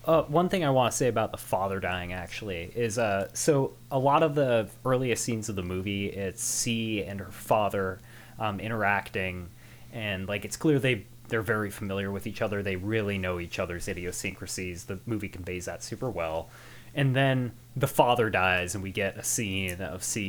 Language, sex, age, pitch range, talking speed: English, male, 20-39, 100-125 Hz, 195 wpm